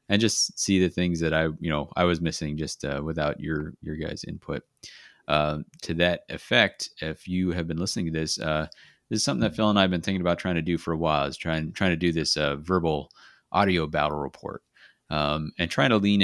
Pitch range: 80-95 Hz